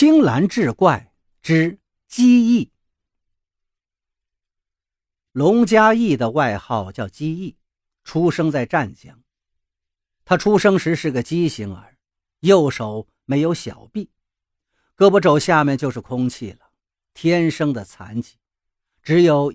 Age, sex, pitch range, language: 50-69, male, 100-165 Hz, Chinese